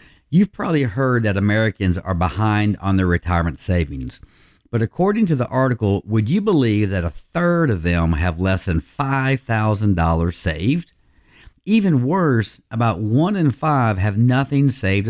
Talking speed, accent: 150 wpm, American